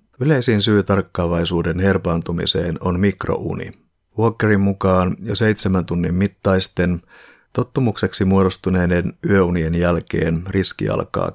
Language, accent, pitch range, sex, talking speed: Finnish, native, 85-100 Hz, male, 95 wpm